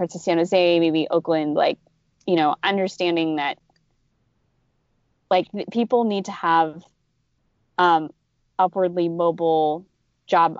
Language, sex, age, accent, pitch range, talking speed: English, female, 20-39, American, 160-185 Hz, 115 wpm